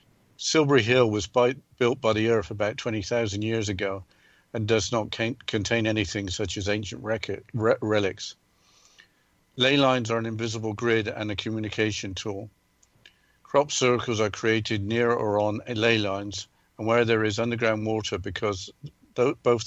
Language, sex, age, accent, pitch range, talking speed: English, male, 50-69, British, 105-120 Hz, 145 wpm